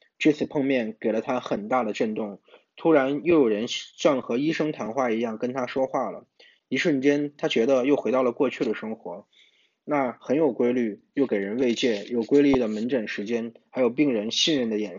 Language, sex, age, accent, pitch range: Chinese, male, 20-39, native, 110-140 Hz